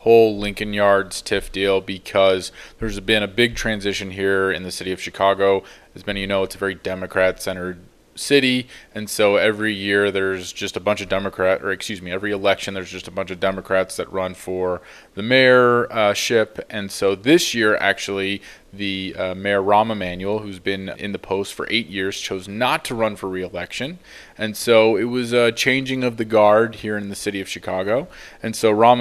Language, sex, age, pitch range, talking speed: English, male, 20-39, 95-115 Hz, 200 wpm